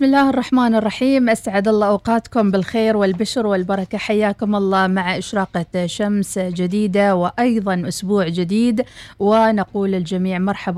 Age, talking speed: 40-59, 120 wpm